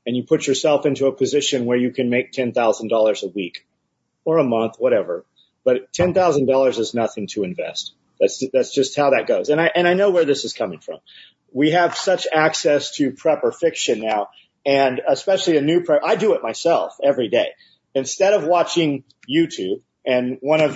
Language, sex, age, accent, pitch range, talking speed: English, male, 40-59, American, 140-195 Hz, 190 wpm